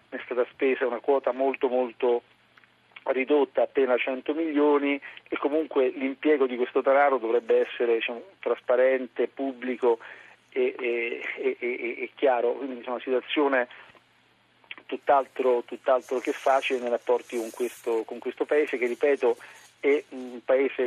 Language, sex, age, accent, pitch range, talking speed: Italian, male, 40-59, native, 120-140 Hz, 120 wpm